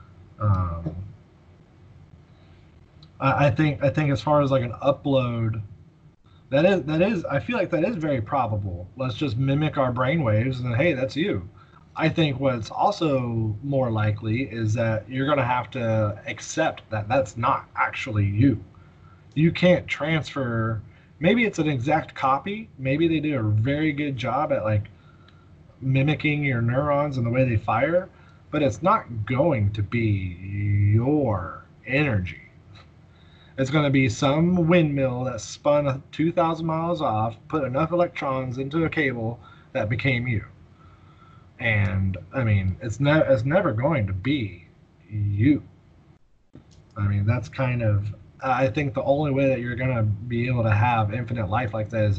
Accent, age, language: American, 20-39, English